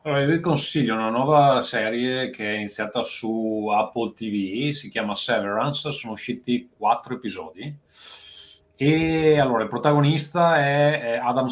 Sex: male